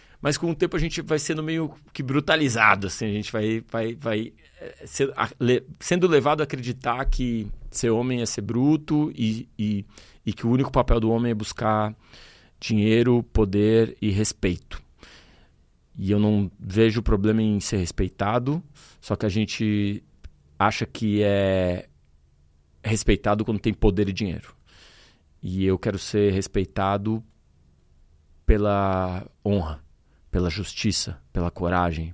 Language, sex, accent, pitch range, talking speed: Portuguese, male, Brazilian, 95-120 Hz, 145 wpm